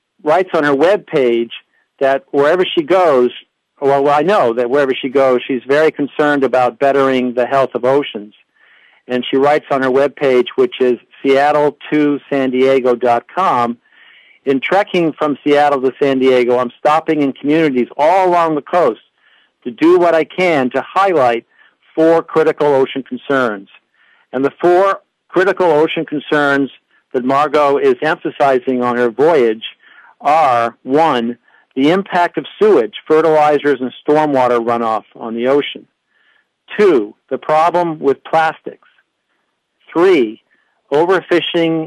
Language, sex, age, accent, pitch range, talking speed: English, male, 50-69, American, 130-160 Hz, 135 wpm